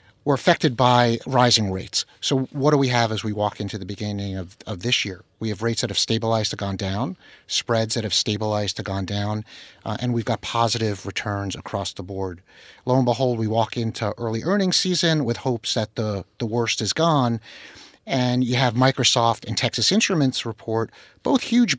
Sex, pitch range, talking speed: male, 110-145 Hz, 200 wpm